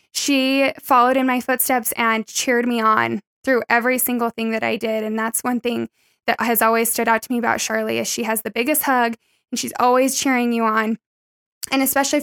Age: 10-29